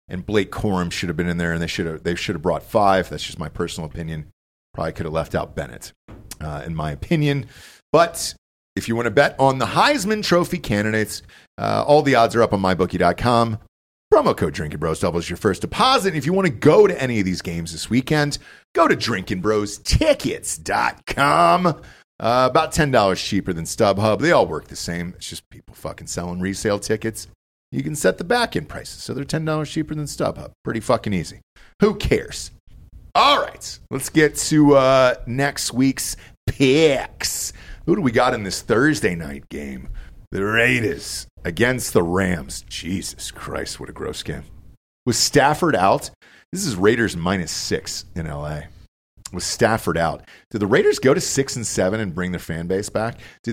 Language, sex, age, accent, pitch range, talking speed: English, male, 40-59, American, 85-135 Hz, 185 wpm